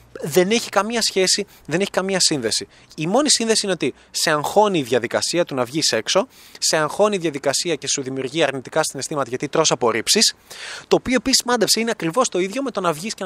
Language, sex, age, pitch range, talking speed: Greek, male, 20-39, 145-195 Hz, 210 wpm